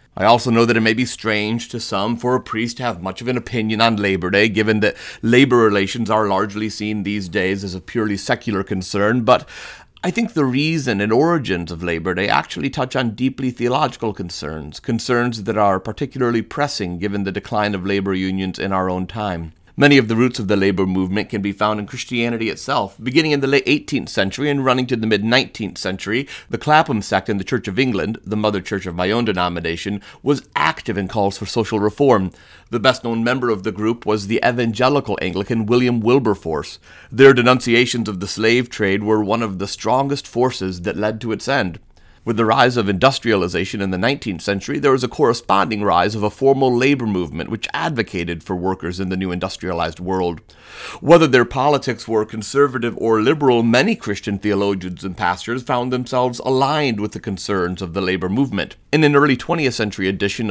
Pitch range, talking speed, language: 95-125 Hz, 200 wpm, English